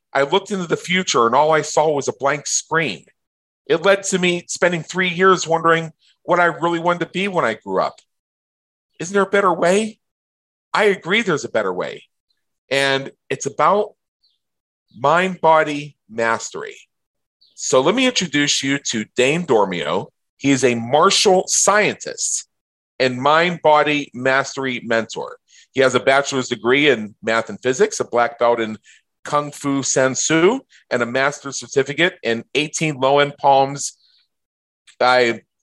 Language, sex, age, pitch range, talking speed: English, male, 40-59, 120-165 Hz, 150 wpm